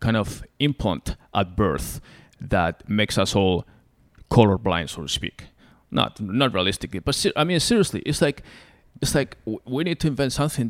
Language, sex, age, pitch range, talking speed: English, male, 30-49, 95-125 Hz, 170 wpm